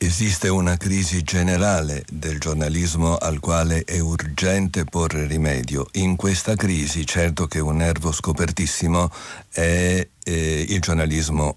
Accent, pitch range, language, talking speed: native, 80-100 Hz, Italian, 125 wpm